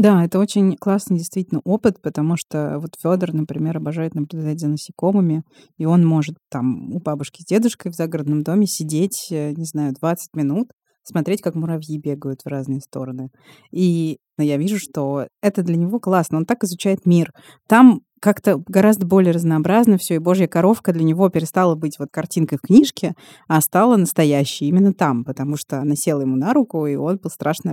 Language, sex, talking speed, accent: Russian, female, 180 wpm, native